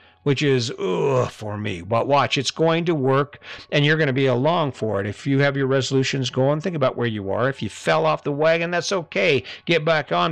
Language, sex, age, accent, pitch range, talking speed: English, male, 50-69, American, 110-155 Hz, 240 wpm